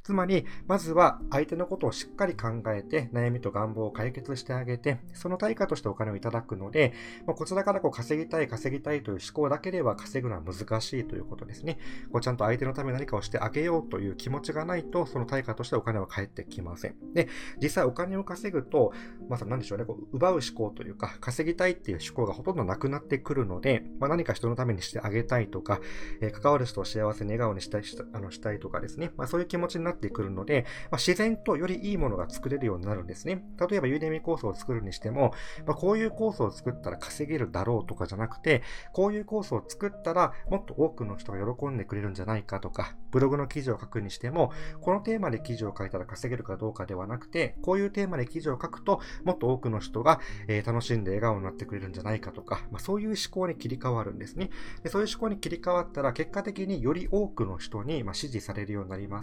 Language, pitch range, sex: Japanese, 110-165 Hz, male